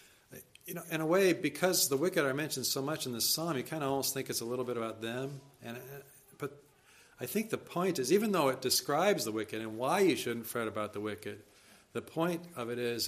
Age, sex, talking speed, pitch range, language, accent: 50-69, male, 240 wpm, 115-160 Hz, English, American